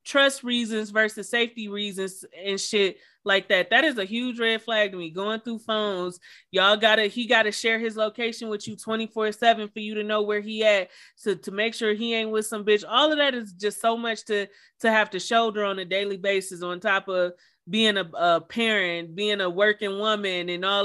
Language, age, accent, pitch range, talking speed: English, 30-49, American, 205-255 Hz, 215 wpm